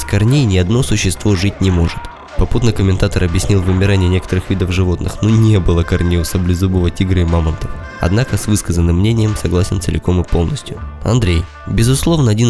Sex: male